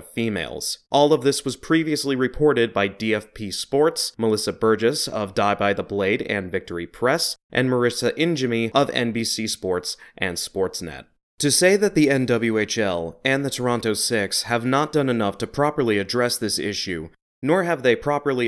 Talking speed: 160 wpm